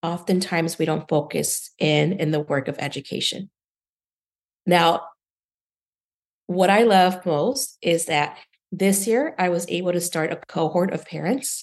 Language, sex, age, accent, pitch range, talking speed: English, female, 40-59, American, 155-190 Hz, 145 wpm